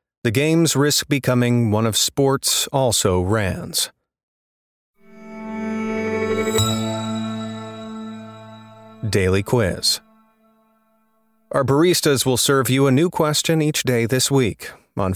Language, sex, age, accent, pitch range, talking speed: English, male, 30-49, American, 105-140 Hz, 90 wpm